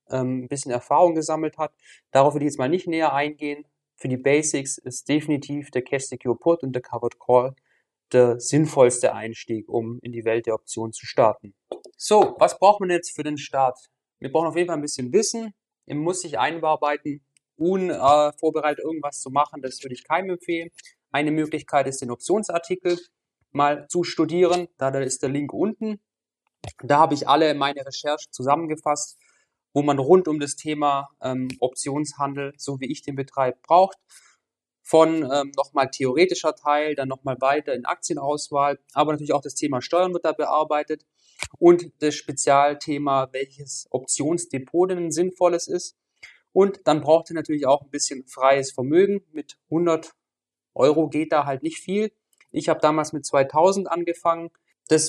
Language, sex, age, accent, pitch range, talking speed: German, male, 30-49, German, 135-165 Hz, 165 wpm